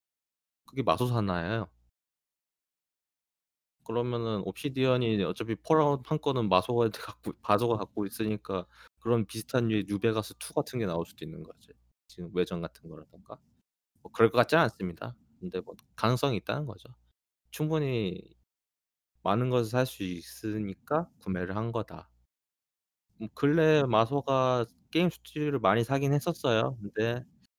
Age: 20-39